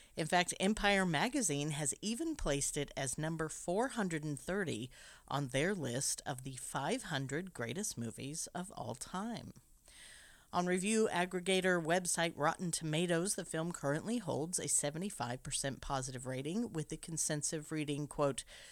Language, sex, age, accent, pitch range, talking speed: English, female, 40-59, American, 140-180 Hz, 130 wpm